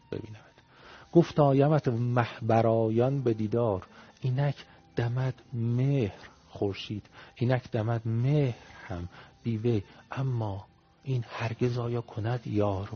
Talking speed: 95 wpm